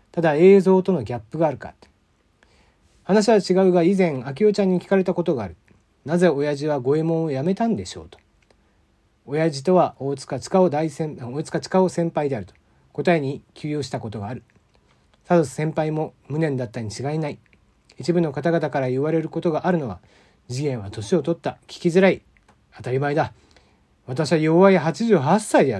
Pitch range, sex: 130-180 Hz, male